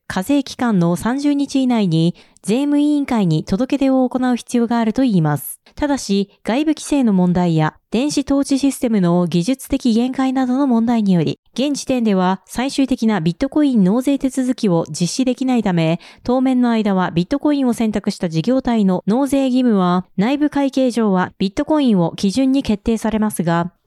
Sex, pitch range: female, 190-270 Hz